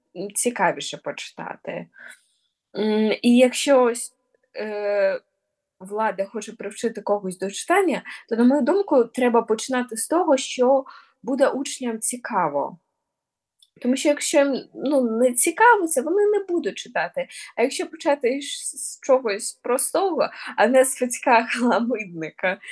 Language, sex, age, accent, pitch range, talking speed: Ukrainian, female, 20-39, native, 205-275 Hz, 115 wpm